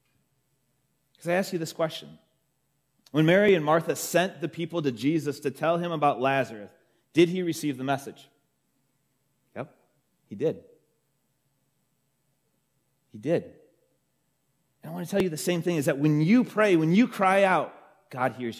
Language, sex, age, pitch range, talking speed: English, male, 30-49, 115-165 Hz, 160 wpm